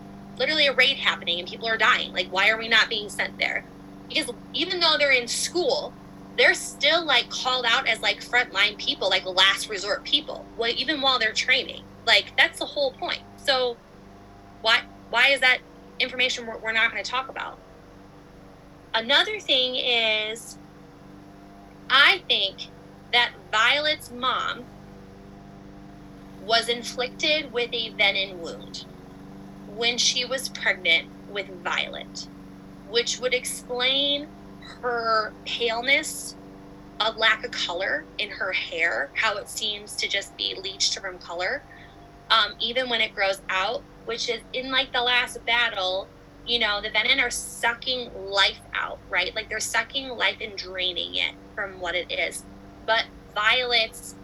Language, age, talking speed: English, 20-39, 145 wpm